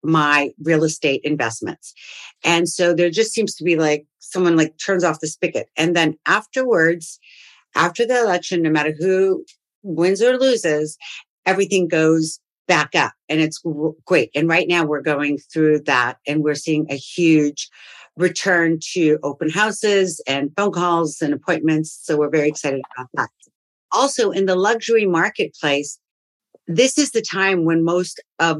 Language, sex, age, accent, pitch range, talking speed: English, female, 50-69, American, 150-180 Hz, 160 wpm